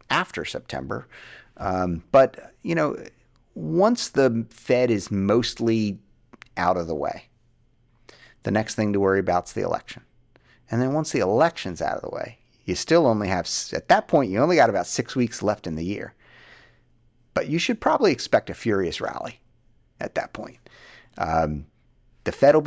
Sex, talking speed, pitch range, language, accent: male, 170 wpm, 100-125 Hz, English, American